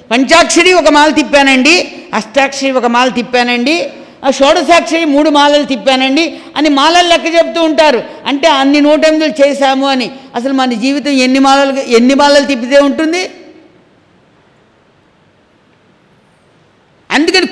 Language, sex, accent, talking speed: English, female, Indian, 115 wpm